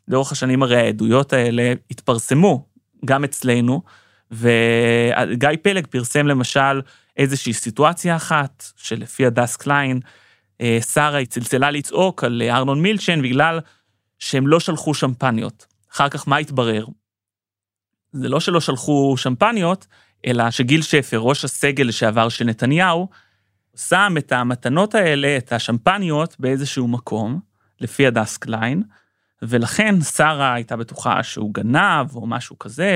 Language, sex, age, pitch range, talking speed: Hebrew, male, 30-49, 120-155 Hz, 120 wpm